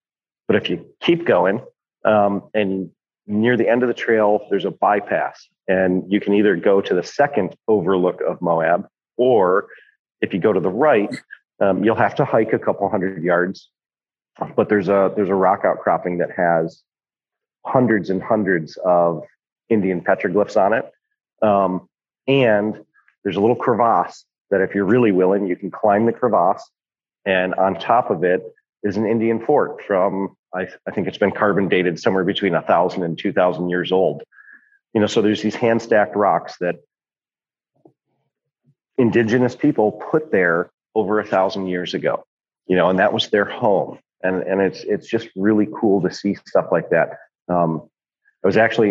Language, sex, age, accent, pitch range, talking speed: English, male, 40-59, American, 95-115 Hz, 170 wpm